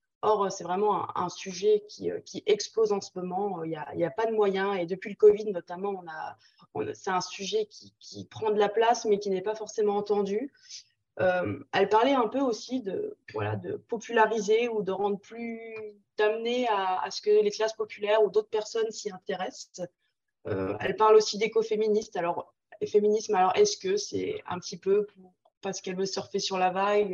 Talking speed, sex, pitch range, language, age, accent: 200 wpm, female, 195-230 Hz, French, 20-39, French